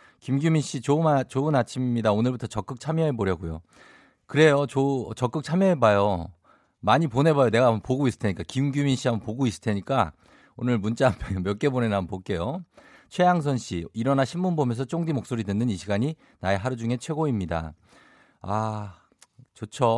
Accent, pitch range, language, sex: native, 100-135 Hz, Korean, male